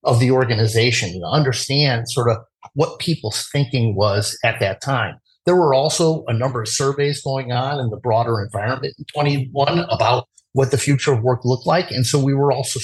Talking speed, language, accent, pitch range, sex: 190 wpm, English, American, 115-145 Hz, male